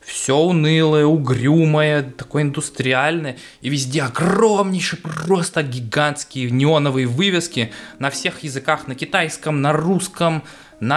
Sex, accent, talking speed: male, native, 110 wpm